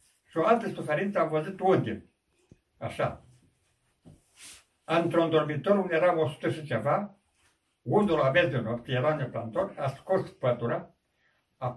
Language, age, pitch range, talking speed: Romanian, 60-79, 125-160 Hz, 145 wpm